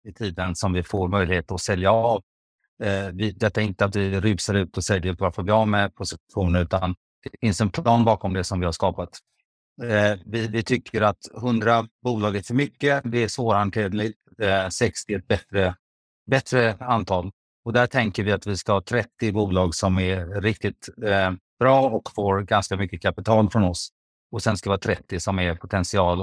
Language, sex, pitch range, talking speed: Swedish, male, 95-110 Hz, 200 wpm